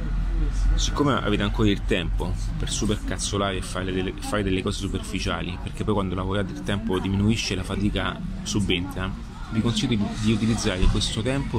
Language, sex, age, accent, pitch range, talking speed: Italian, male, 30-49, native, 90-110 Hz, 160 wpm